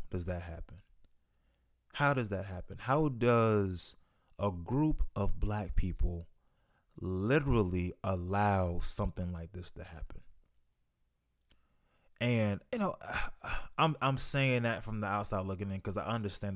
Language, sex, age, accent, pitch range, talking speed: English, male, 20-39, American, 90-105 Hz, 130 wpm